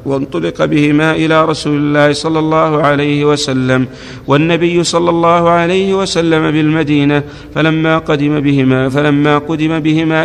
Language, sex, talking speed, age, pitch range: Arabic, male, 125 wpm, 50-69, 140-160 Hz